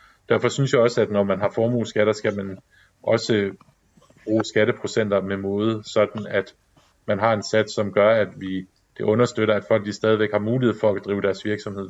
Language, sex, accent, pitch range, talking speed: Danish, male, native, 100-110 Hz, 190 wpm